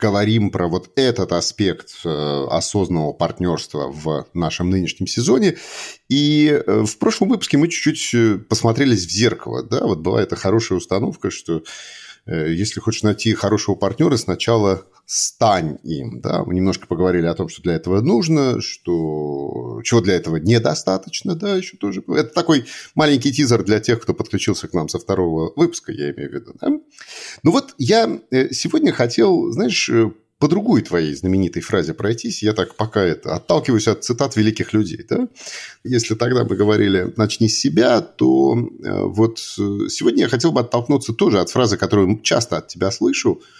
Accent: native